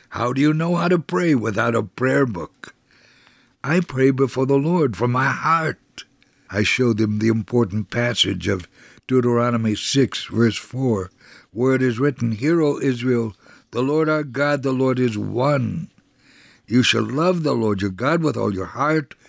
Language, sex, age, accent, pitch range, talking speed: English, male, 60-79, American, 110-140 Hz, 175 wpm